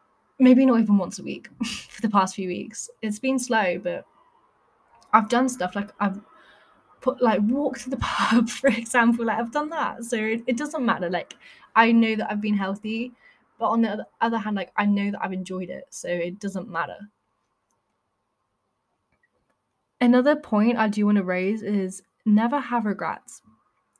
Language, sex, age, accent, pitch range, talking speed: English, female, 10-29, British, 195-235 Hz, 180 wpm